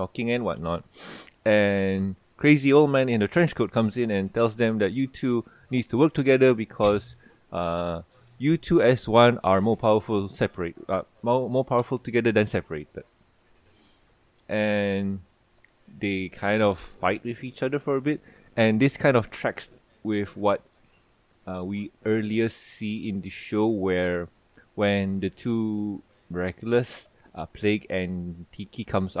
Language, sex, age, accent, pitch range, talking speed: English, male, 20-39, Malaysian, 95-120 Hz, 155 wpm